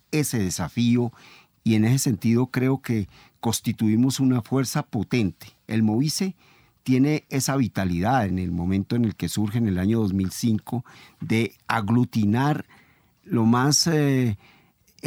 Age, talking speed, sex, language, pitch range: 50-69, 130 wpm, male, Spanish, 100-130 Hz